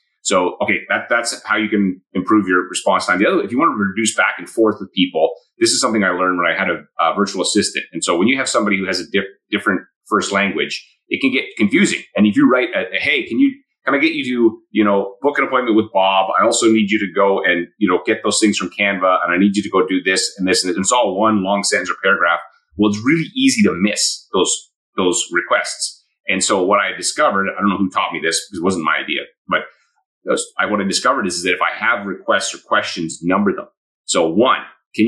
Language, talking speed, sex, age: English, 255 wpm, male, 30-49